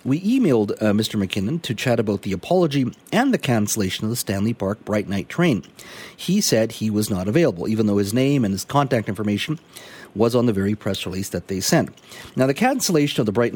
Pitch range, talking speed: 100-125 Hz, 215 wpm